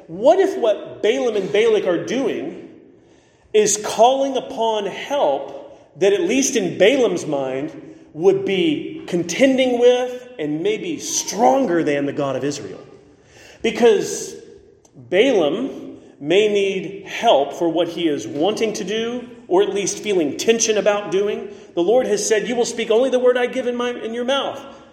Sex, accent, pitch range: male, American, 195-315 Hz